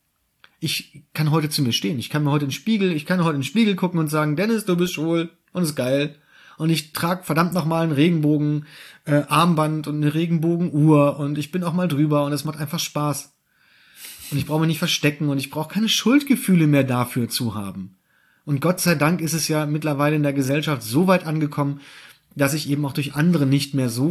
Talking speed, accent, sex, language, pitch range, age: 220 wpm, German, male, German, 140-170 Hz, 30-49